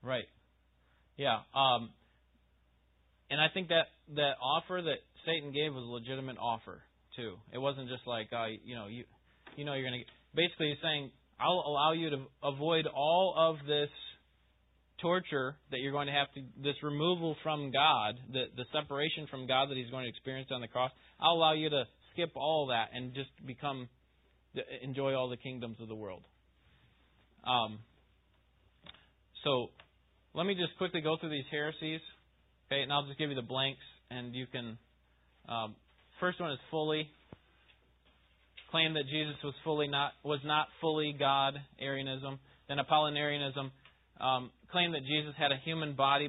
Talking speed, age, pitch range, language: 165 wpm, 20-39, 115-150 Hz, English